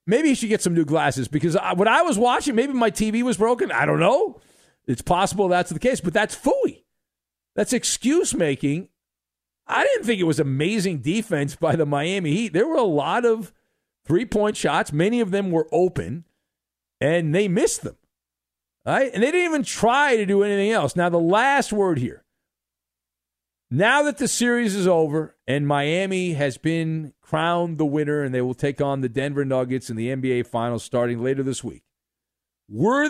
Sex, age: male, 50-69